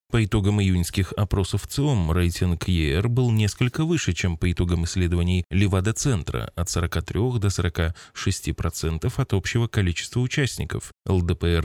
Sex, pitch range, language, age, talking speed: male, 85-115 Hz, Russian, 20-39, 125 wpm